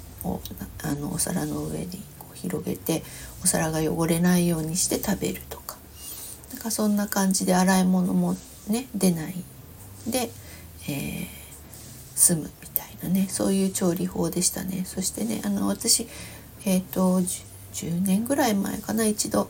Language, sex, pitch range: Japanese, female, 160-190 Hz